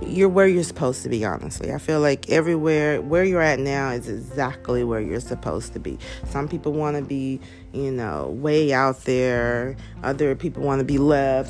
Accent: American